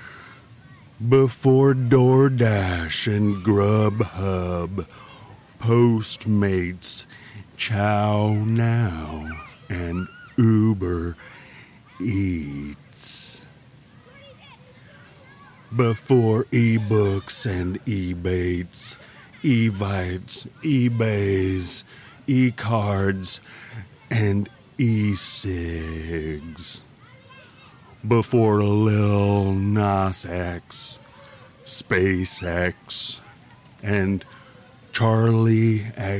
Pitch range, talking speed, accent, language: 95-125 Hz, 45 wpm, American, English